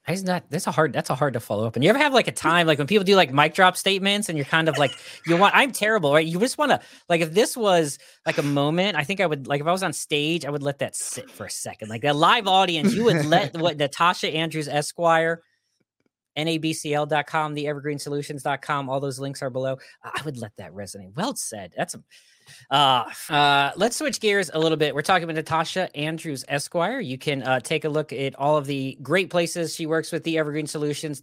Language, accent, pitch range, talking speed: English, American, 135-165 Hz, 240 wpm